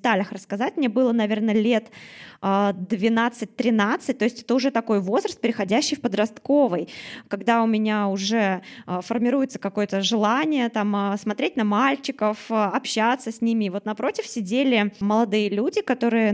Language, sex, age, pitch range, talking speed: Russian, female, 20-39, 200-235 Hz, 130 wpm